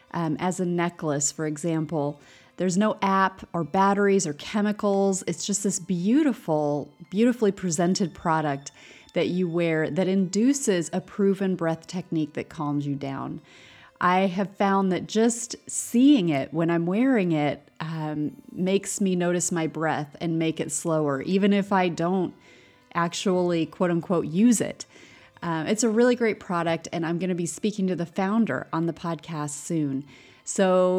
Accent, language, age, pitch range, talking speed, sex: American, English, 30-49, 160-200 Hz, 160 wpm, female